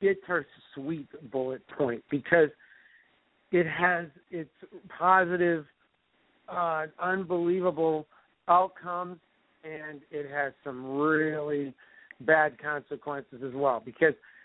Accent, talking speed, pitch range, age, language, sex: American, 95 wpm, 150-185 Hz, 50-69, English, male